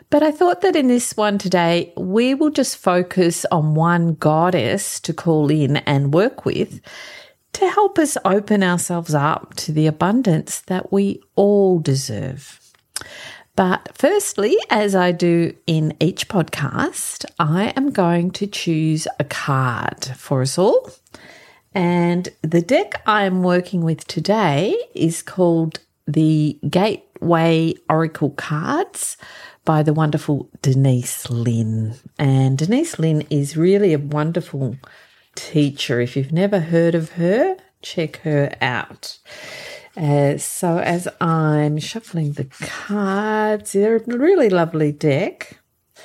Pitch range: 155-200 Hz